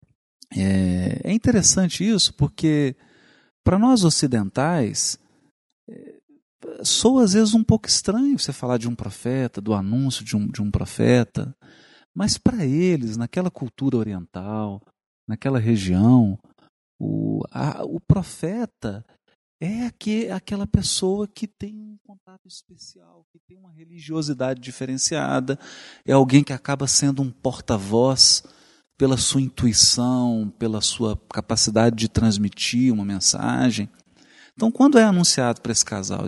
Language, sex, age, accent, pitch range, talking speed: Portuguese, male, 40-59, Brazilian, 105-170 Hz, 120 wpm